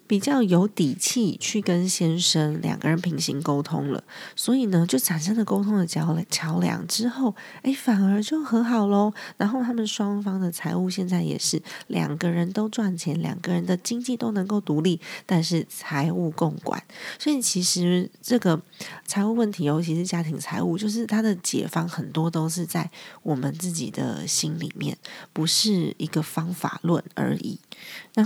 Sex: female